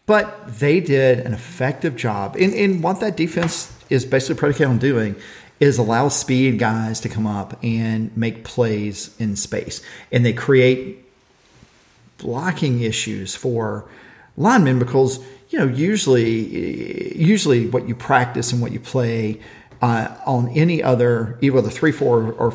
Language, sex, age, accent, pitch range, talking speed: English, male, 40-59, American, 110-135 Hz, 150 wpm